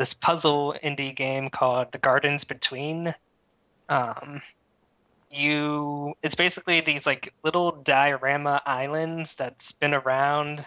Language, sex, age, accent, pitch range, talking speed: English, male, 20-39, American, 135-145 Hz, 110 wpm